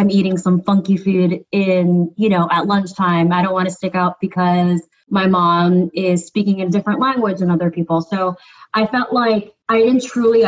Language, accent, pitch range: English, American, 170-195 Hz